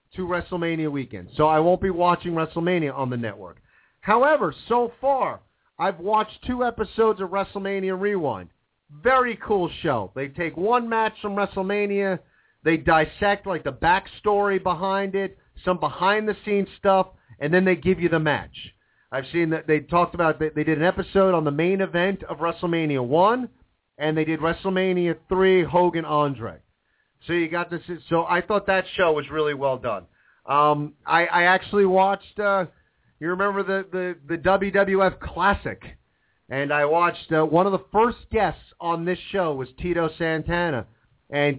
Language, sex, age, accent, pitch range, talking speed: English, male, 40-59, American, 150-190 Hz, 165 wpm